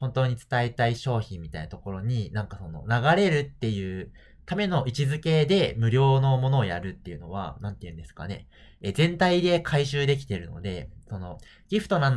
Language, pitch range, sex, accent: Japanese, 95-140 Hz, male, native